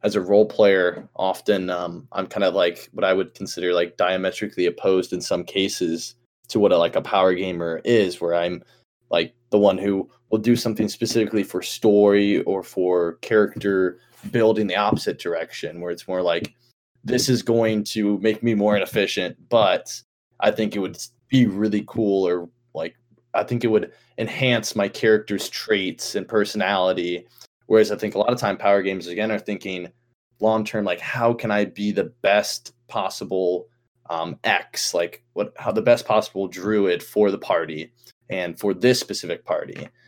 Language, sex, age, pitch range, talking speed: English, male, 20-39, 90-115 Hz, 175 wpm